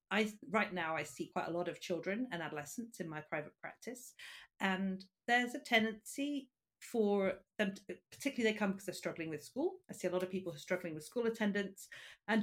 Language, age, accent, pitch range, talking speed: English, 40-59, British, 175-240 Hz, 215 wpm